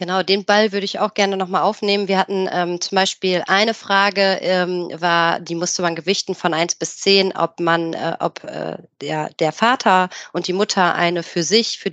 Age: 30-49